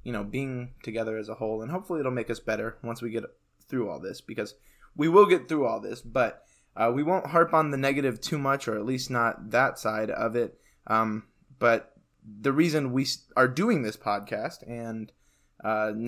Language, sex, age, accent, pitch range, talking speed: English, male, 20-39, American, 110-135 Hz, 205 wpm